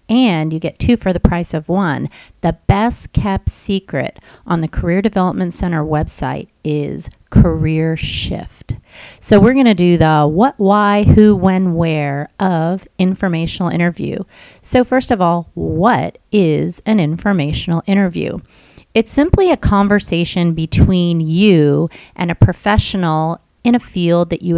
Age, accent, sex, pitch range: 30-49, American, female, 160-200 Hz